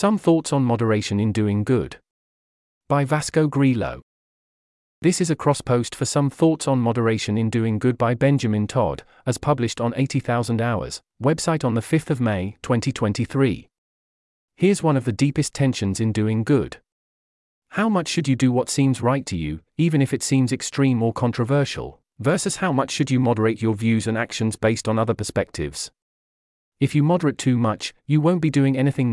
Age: 40-59